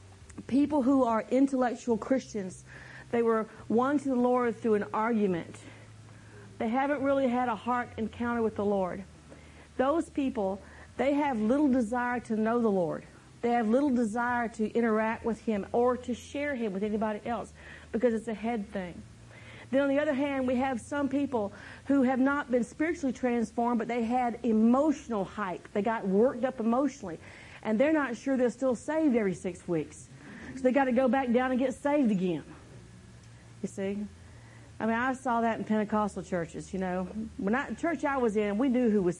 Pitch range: 205-270 Hz